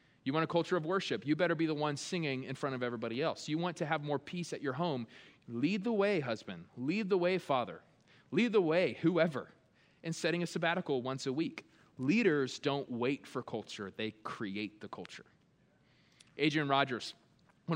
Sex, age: male, 20-39